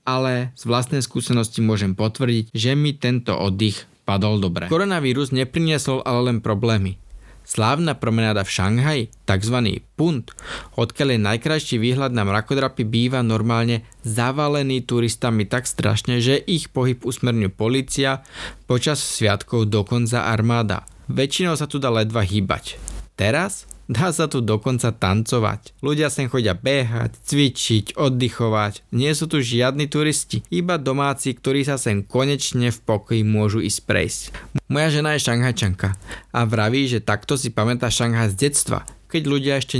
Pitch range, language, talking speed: 110-135 Hz, Slovak, 140 wpm